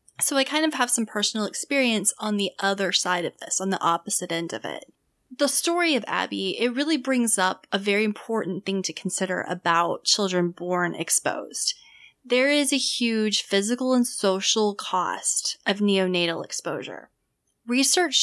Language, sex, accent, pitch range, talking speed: English, female, American, 180-235 Hz, 165 wpm